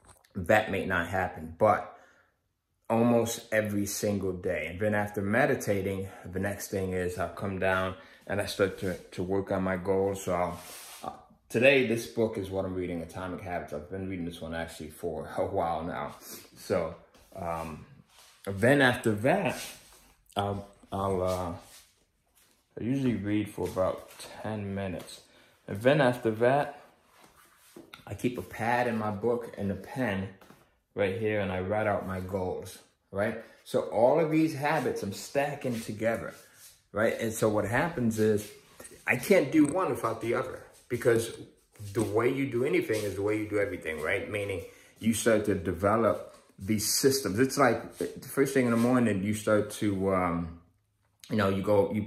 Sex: male